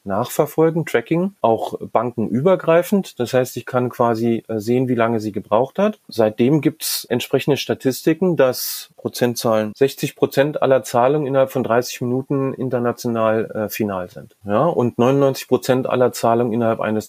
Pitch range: 110-135 Hz